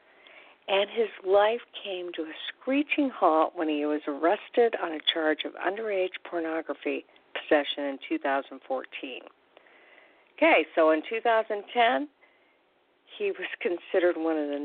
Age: 50-69